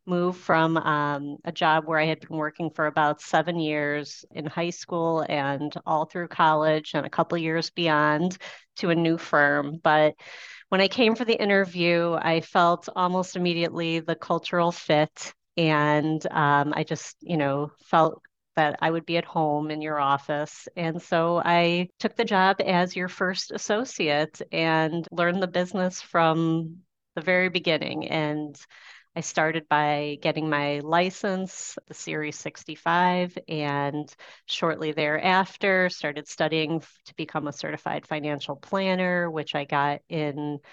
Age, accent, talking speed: 30-49, American, 150 wpm